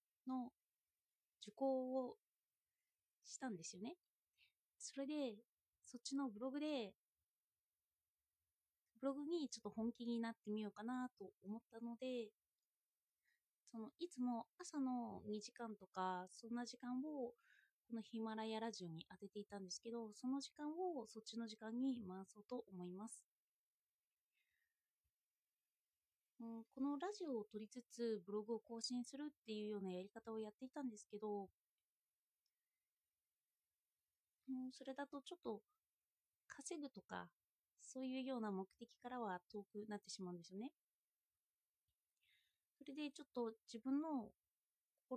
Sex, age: female, 30-49